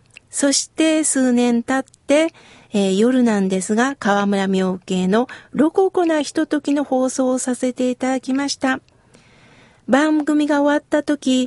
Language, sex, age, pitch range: Japanese, female, 50-69, 220-300 Hz